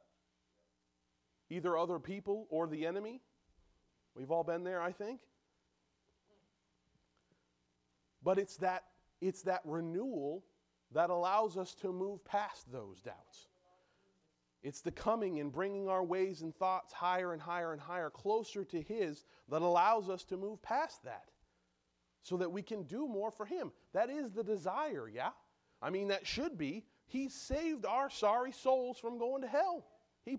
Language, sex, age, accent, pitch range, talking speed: English, male, 30-49, American, 130-210 Hz, 155 wpm